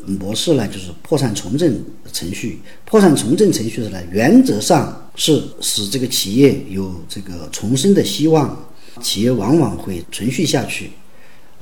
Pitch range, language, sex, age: 100-145 Hz, Chinese, male, 40-59